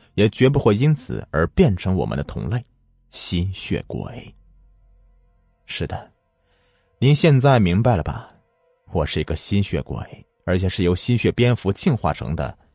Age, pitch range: 30-49, 85-110 Hz